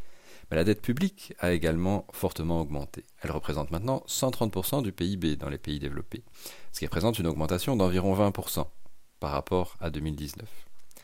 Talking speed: 160 wpm